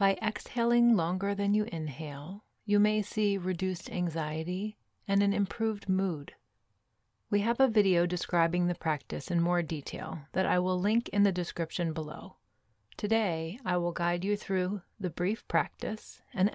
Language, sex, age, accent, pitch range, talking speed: English, female, 30-49, American, 155-200 Hz, 155 wpm